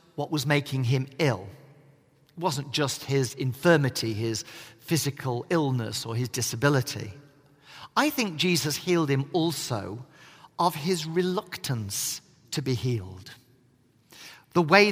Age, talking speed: 50-69, 120 wpm